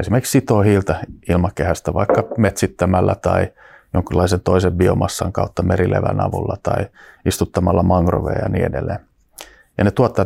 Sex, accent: male, native